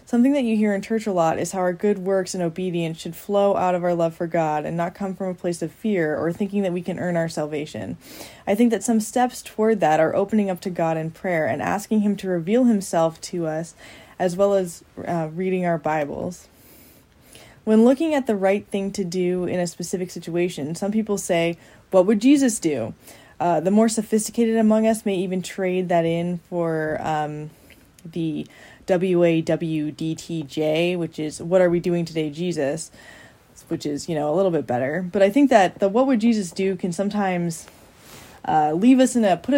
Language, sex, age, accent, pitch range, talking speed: English, female, 10-29, American, 165-210 Hz, 210 wpm